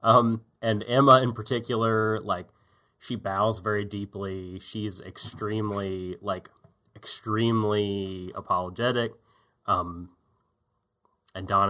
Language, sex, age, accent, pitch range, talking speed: English, male, 30-49, American, 95-120 Hz, 90 wpm